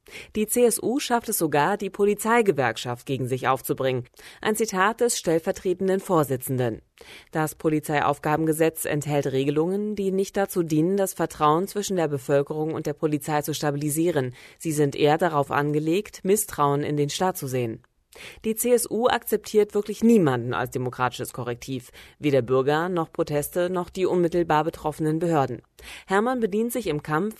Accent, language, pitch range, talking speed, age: German, German, 145-200 Hz, 145 wpm, 30-49